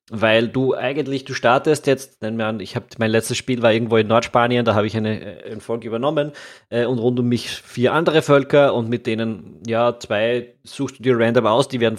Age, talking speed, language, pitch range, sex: 20-39, 205 wpm, German, 110-130 Hz, male